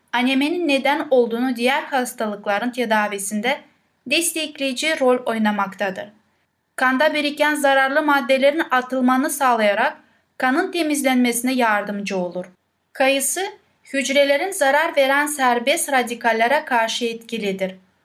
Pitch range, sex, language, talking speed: 225-280 Hz, female, Turkish, 90 wpm